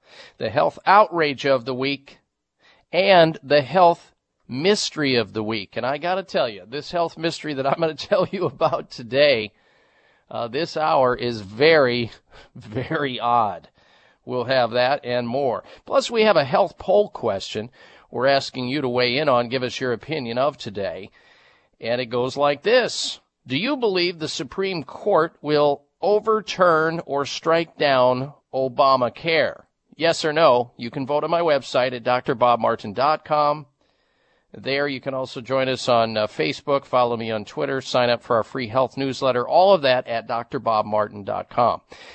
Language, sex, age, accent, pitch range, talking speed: English, male, 40-59, American, 125-160 Hz, 160 wpm